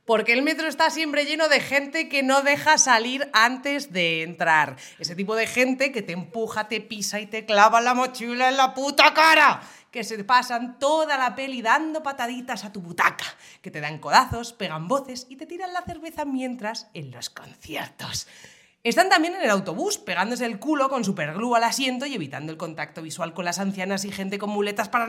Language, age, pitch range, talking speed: Spanish, 30-49, 185-275 Hz, 200 wpm